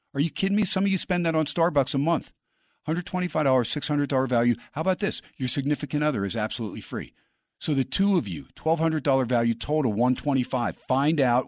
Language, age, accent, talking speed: English, 50-69, American, 190 wpm